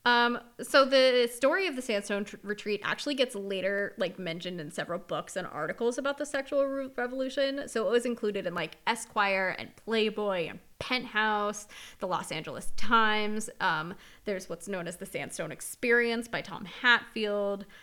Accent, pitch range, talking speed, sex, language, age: American, 195-240 Hz, 160 wpm, female, English, 20-39